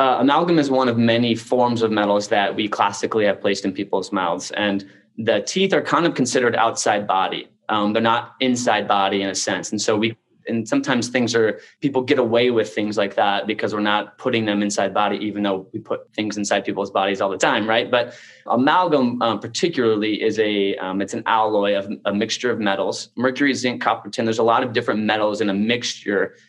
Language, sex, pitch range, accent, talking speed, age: English, male, 105-120 Hz, American, 215 wpm, 20-39